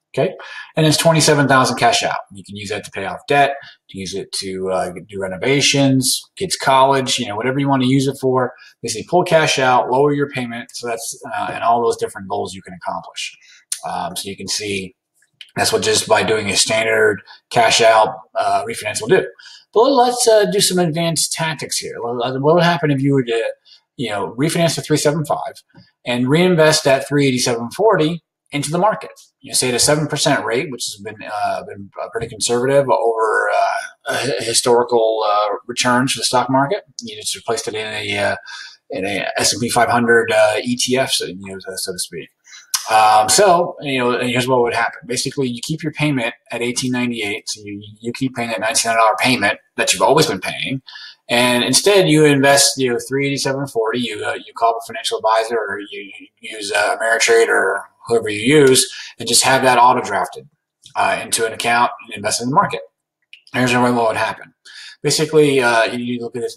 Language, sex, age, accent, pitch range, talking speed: English, male, 30-49, American, 115-150 Hz, 195 wpm